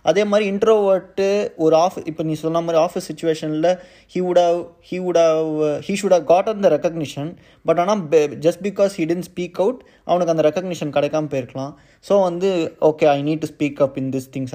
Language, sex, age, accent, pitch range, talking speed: Tamil, male, 20-39, native, 140-180 Hz, 190 wpm